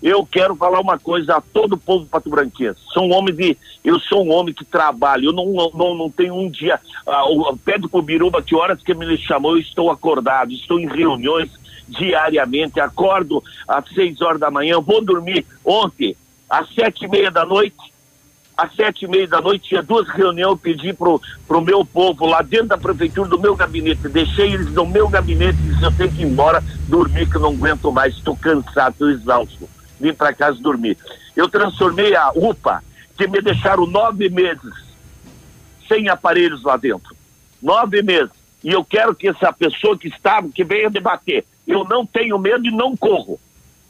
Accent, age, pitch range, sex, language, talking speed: Brazilian, 60-79, 160-220 Hz, male, Portuguese, 195 wpm